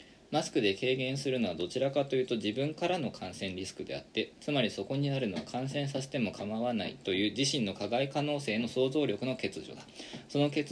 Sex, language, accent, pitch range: male, Japanese, native, 105-135 Hz